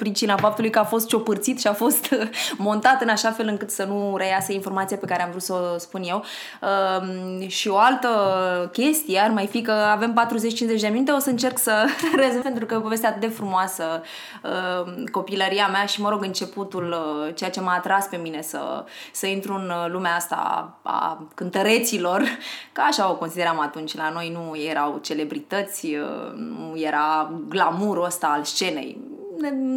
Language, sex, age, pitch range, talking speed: Romanian, female, 20-39, 180-220 Hz, 185 wpm